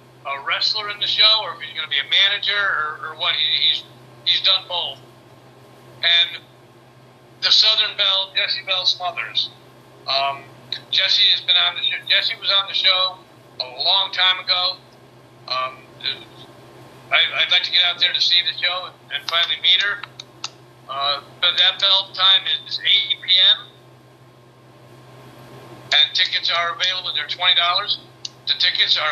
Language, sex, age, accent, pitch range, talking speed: English, male, 50-69, American, 140-185 Hz, 155 wpm